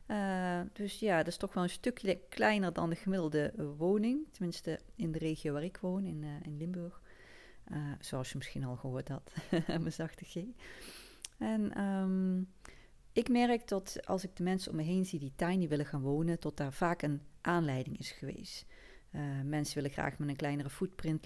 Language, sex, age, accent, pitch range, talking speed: Dutch, female, 30-49, Dutch, 145-180 Hz, 190 wpm